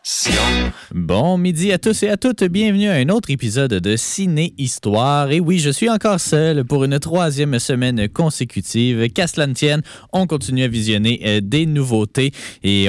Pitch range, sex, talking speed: 110-155 Hz, male, 170 wpm